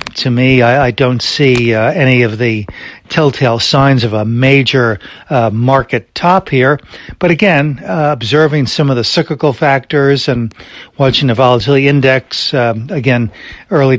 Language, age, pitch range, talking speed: English, 60-79, 120-140 Hz, 155 wpm